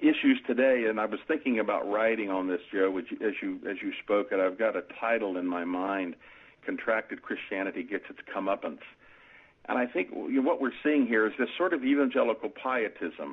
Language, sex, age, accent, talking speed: English, male, 50-69, American, 185 wpm